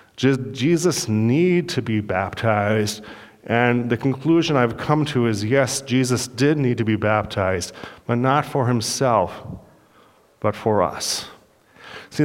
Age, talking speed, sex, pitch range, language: 40-59, 135 wpm, male, 115-145 Hz, English